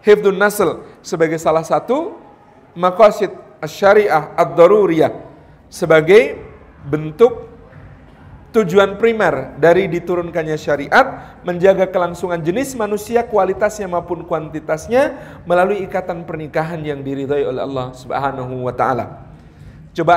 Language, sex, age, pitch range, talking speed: Indonesian, male, 40-59, 160-205 Hz, 100 wpm